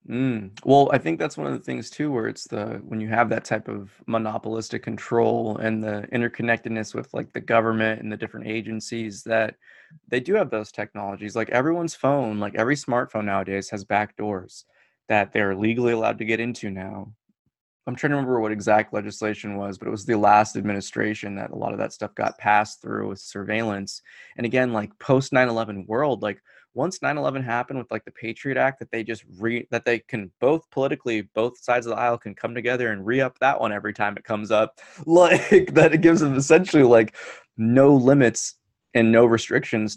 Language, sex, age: English, male, 20-39